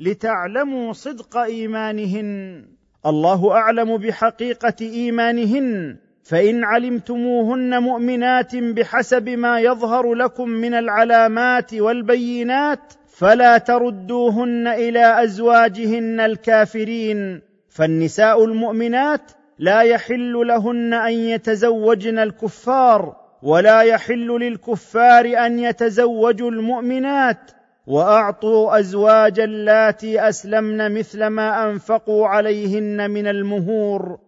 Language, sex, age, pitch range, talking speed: Arabic, male, 40-59, 210-240 Hz, 80 wpm